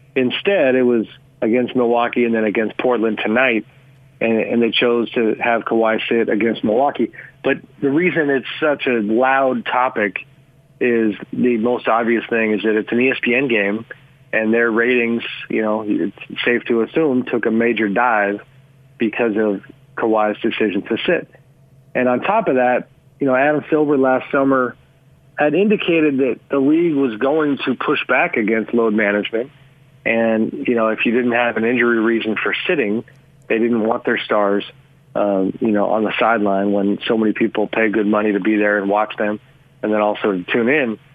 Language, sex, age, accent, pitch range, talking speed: English, male, 40-59, American, 110-135 Hz, 180 wpm